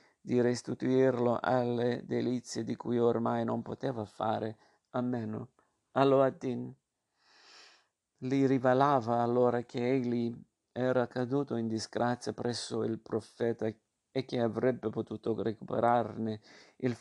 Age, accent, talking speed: 50-69, native, 115 wpm